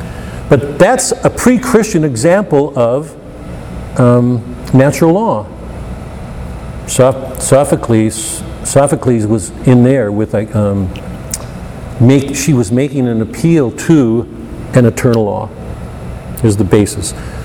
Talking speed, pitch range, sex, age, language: 105 wpm, 110-140 Hz, male, 50-69, English